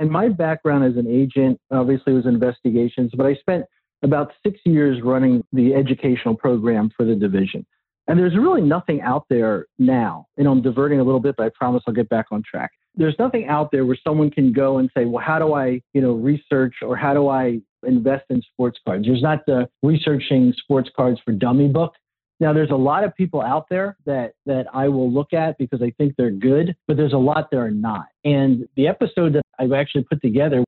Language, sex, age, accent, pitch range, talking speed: English, male, 50-69, American, 125-165 Hz, 215 wpm